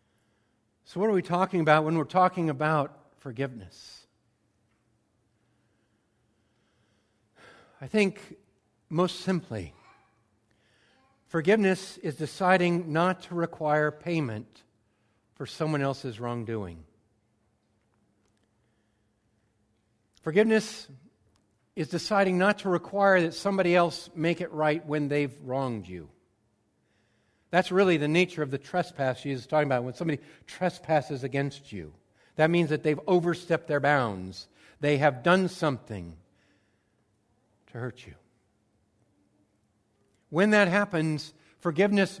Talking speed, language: 105 wpm, English